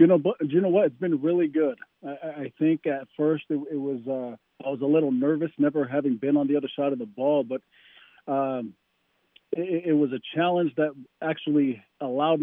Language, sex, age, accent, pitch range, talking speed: English, male, 40-59, American, 135-155 Hz, 210 wpm